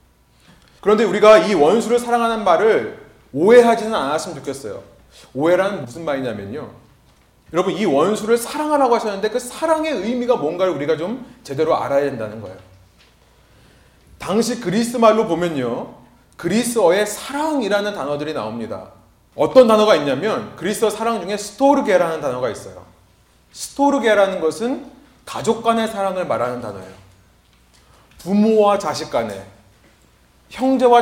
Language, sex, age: Korean, male, 30-49